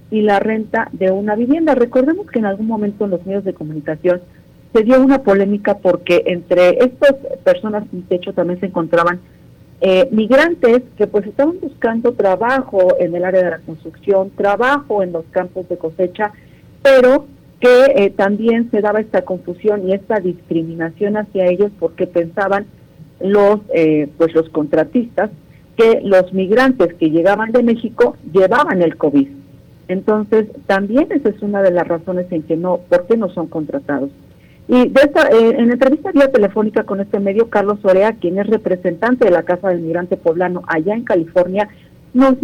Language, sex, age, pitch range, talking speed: Spanish, female, 40-59, 180-235 Hz, 165 wpm